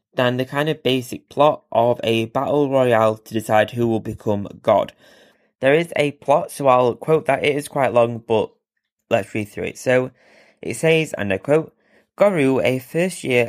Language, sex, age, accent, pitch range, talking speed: English, male, 20-39, British, 110-140 Hz, 185 wpm